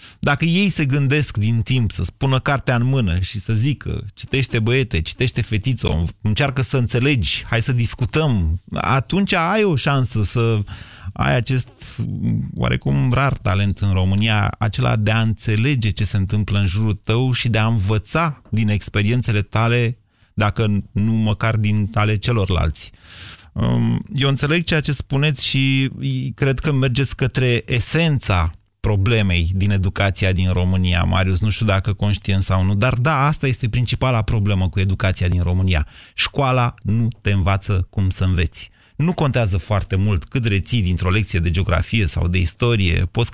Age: 30-49